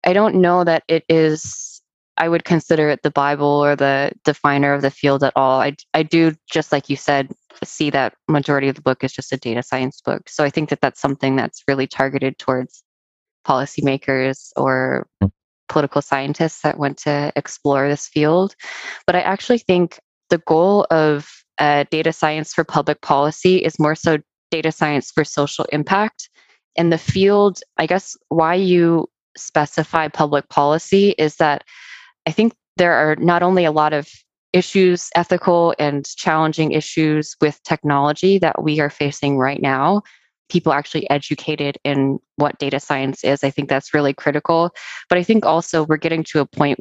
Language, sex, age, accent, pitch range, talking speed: English, female, 20-39, American, 140-165 Hz, 175 wpm